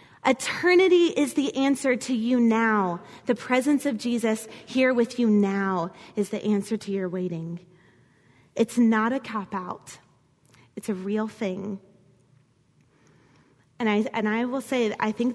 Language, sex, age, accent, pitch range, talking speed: English, female, 20-39, American, 195-240 Hz, 145 wpm